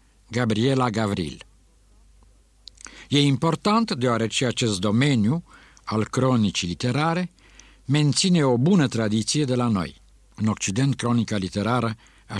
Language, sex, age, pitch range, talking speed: Romanian, male, 60-79, 110-150 Hz, 105 wpm